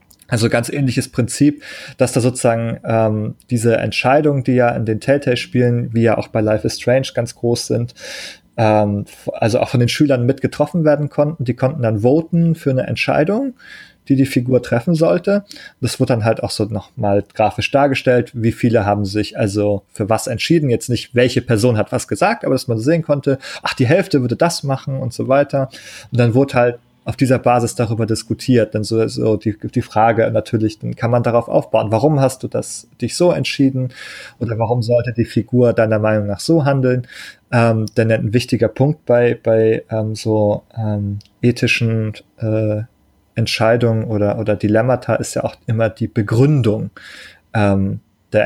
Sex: male